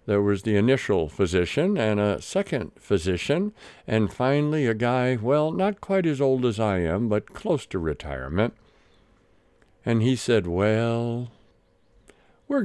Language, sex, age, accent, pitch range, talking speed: English, male, 60-79, American, 85-130 Hz, 140 wpm